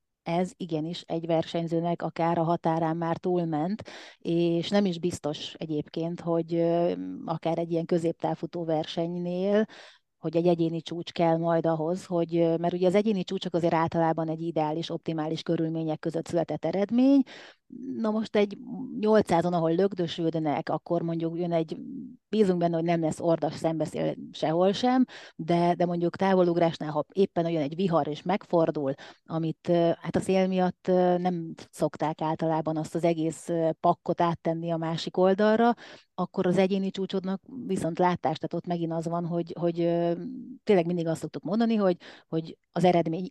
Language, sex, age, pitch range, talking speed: Hungarian, female, 30-49, 160-180 Hz, 150 wpm